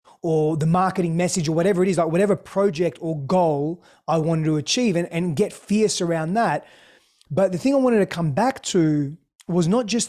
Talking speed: 210 wpm